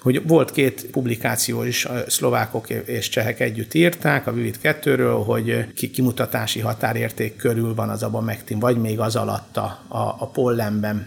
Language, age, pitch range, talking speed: Hungarian, 50-69, 115-145 Hz, 155 wpm